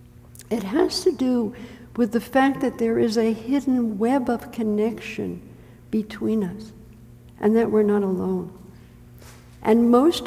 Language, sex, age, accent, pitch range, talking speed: English, female, 60-79, American, 195-245 Hz, 140 wpm